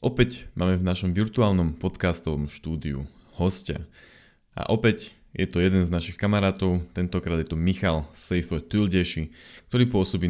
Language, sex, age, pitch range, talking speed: Slovak, male, 20-39, 85-100 Hz, 140 wpm